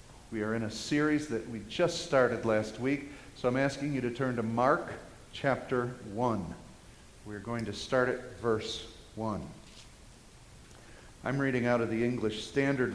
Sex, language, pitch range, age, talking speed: male, English, 125-175 Hz, 50-69, 160 wpm